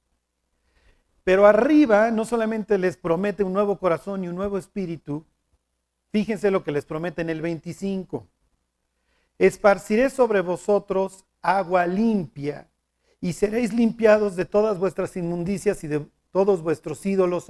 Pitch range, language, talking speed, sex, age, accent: 160-220 Hz, Spanish, 130 wpm, male, 40-59, Mexican